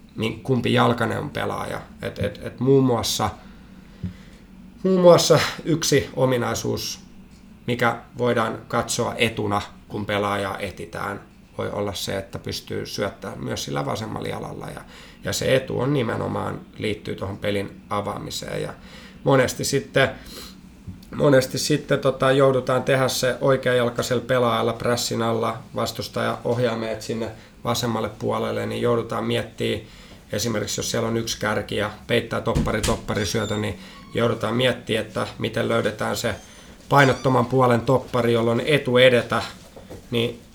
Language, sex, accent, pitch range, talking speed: Finnish, male, native, 110-130 Hz, 125 wpm